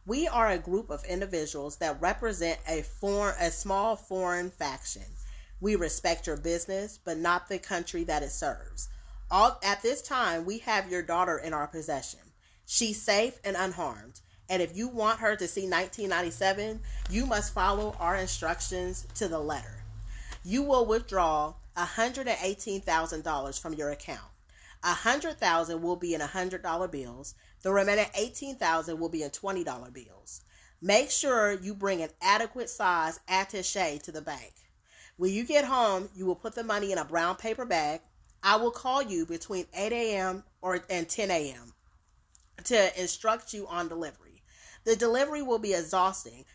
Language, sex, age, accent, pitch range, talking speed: English, female, 30-49, American, 165-210 Hz, 155 wpm